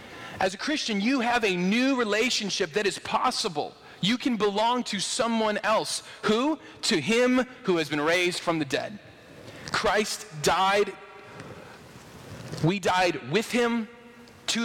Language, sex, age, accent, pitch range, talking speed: English, male, 30-49, American, 165-215 Hz, 140 wpm